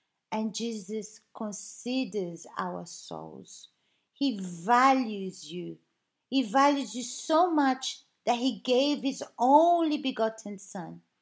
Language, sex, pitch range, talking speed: Portuguese, female, 205-265 Hz, 105 wpm